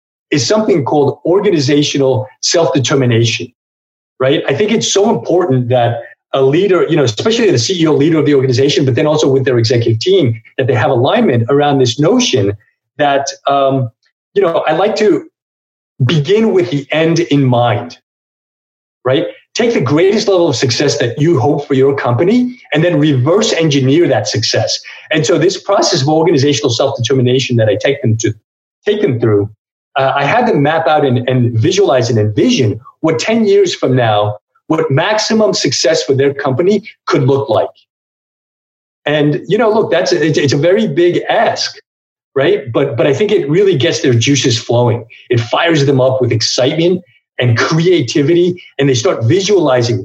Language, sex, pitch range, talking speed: English, male, 125-175 Hz, 170 wpm